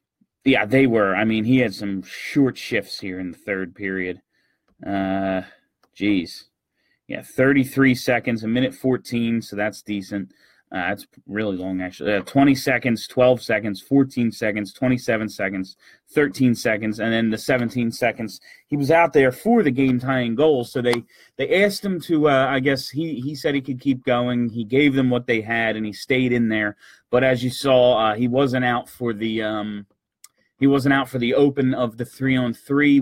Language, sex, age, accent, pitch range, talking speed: English, male, 30-49, American, 110-135 Hz, 180 wpm